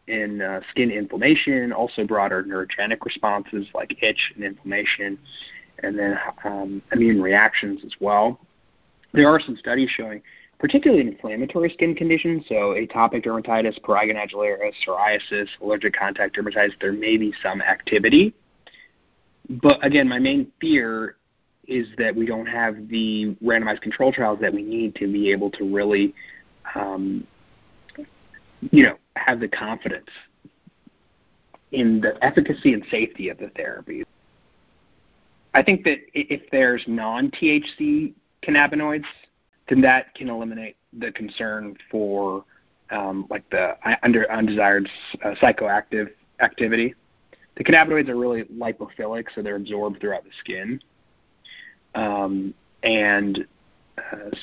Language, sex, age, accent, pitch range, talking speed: English, male, 30-49, American, 105-145 Hz, 125 wpm